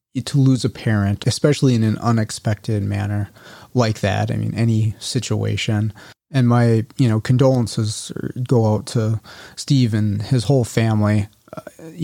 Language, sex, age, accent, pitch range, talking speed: English, male, 30-49, American, 105-120 Hz, 145 wpm